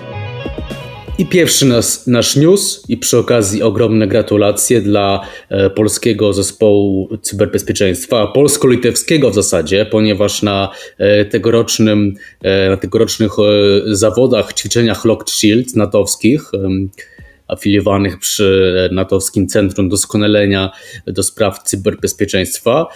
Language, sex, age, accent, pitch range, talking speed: Polish, male, 20-39, native, 100-115 Hz, 90 wpm